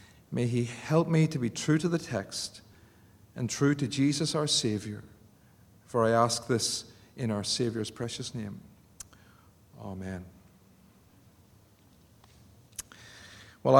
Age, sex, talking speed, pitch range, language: 40-59, male, 115 wpm, 130-195 Hz, English